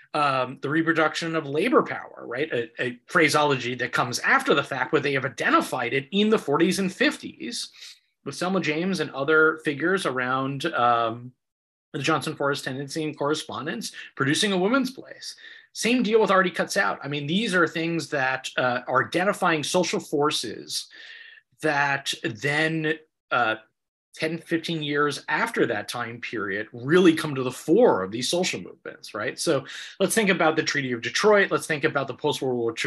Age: 30-49